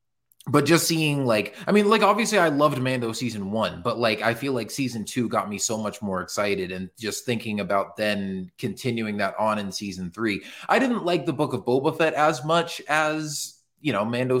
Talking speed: 210 wpm